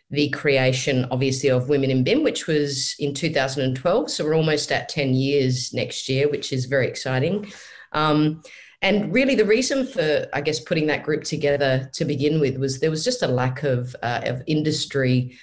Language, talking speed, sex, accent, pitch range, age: English, 185 wpm, female, Australian, 135-155 Hz, 30-49